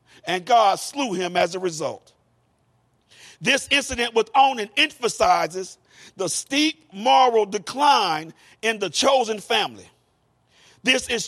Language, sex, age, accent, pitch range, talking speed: English, male, 50-69, American, 200-280 Hz, 115 wpm